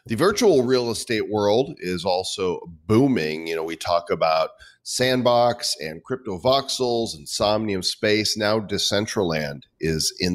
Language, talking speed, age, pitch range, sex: English, 135 wpm, 40-59, 90-115 Hz, male